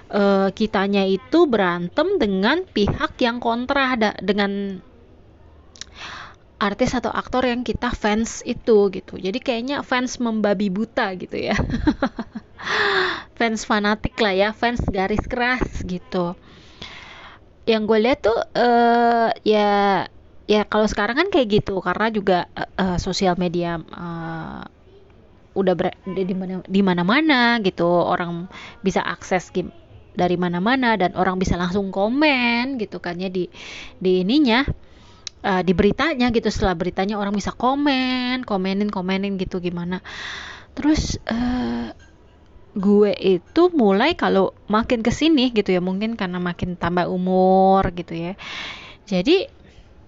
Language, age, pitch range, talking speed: Indonesian, 20-39, 185-240 Hz, 130 wpm